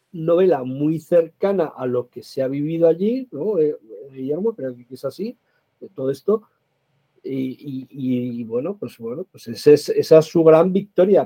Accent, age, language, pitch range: Spanish, 50-69, Spanish, 130-190 Hz